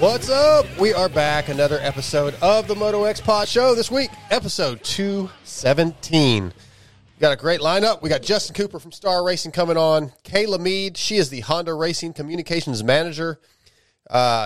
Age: 30-49